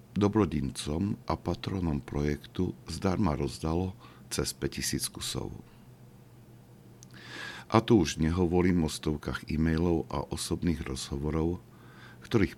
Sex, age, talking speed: male, 50-69, 95 wpm